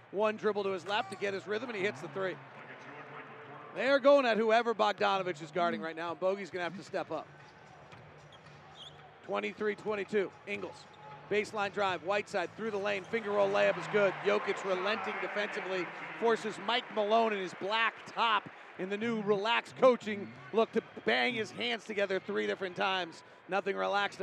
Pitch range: 185-220 Hz